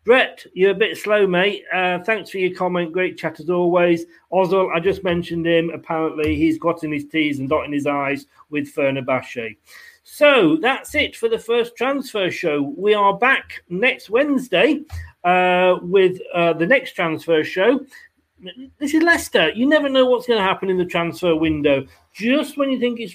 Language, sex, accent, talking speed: English, male, British, 185 wpm